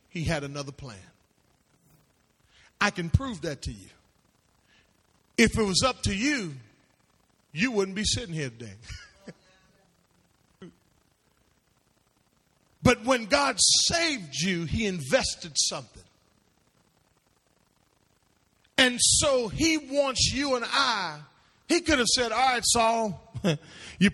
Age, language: 40-59, English